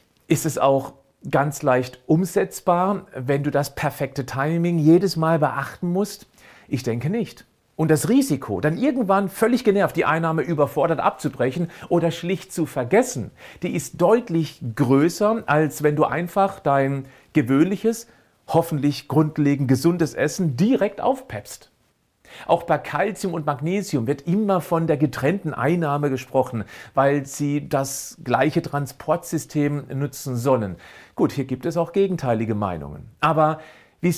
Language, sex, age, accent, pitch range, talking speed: German, male, 40-59, German, 135-175 Hz, 135 wpm